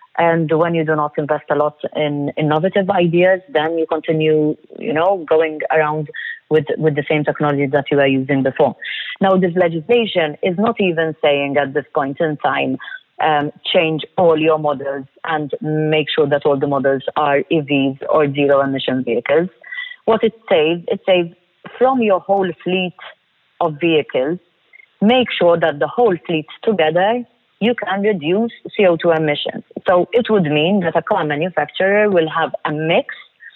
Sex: female